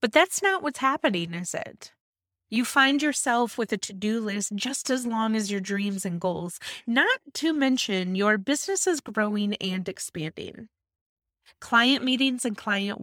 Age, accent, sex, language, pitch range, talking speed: 30-49, American, female, English, 195-270 Hz, 160 wpm